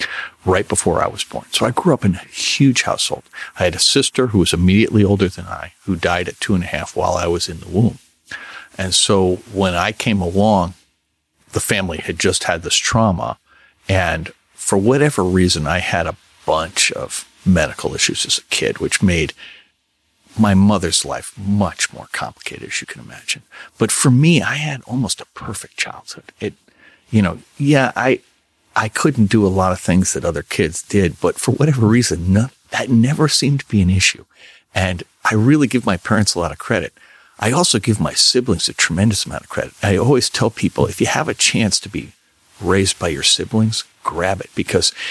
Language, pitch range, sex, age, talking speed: English, 90-115 Hz, male, 50-69, 200 wpm